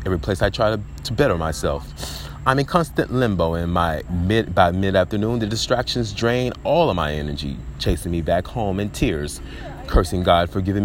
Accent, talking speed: American, 185 wpm